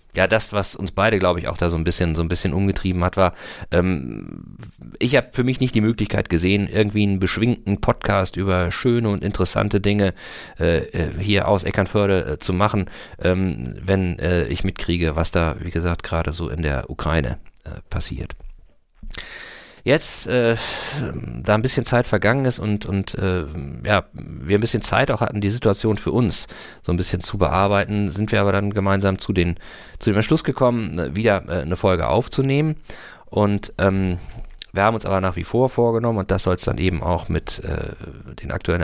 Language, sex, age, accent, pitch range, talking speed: German, male, 40-59, German, 85-105 Hz, 190 wpm